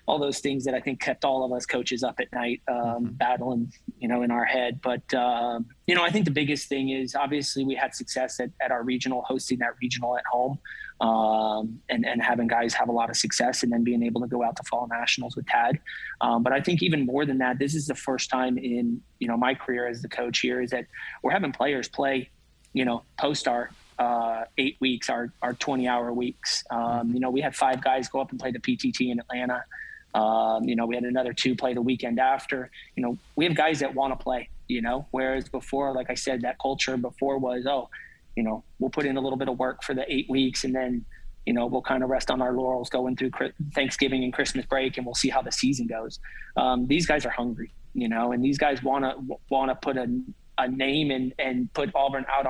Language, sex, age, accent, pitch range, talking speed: English, male, 20-39, American, 120-135 Hz, 245 wpm